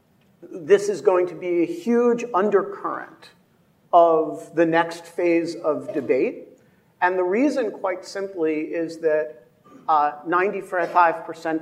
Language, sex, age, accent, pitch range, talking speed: English, male, 50-69, American, 155-200 Hz, 115 wpm